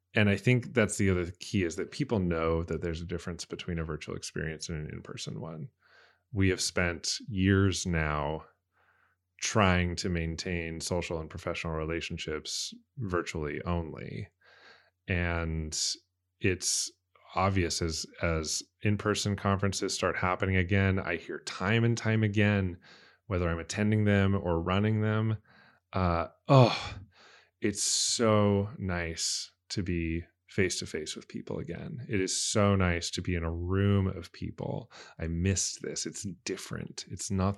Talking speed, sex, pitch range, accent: 140 wpm, male, 85-105 Hz, American